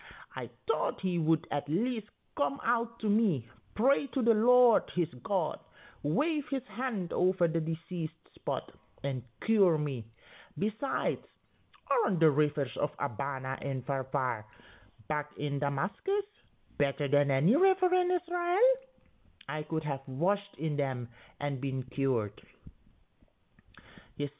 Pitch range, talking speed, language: 125-180 Hz, 130 wpm, English